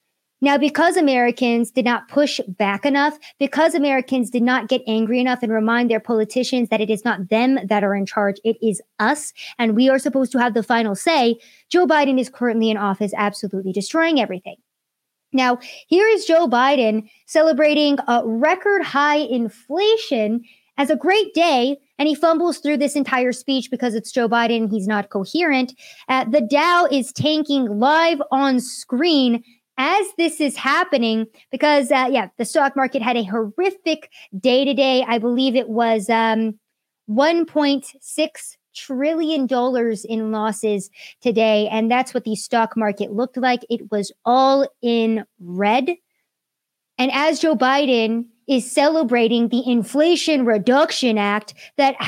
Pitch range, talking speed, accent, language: 230-295 Hz, 155 wpm, American, English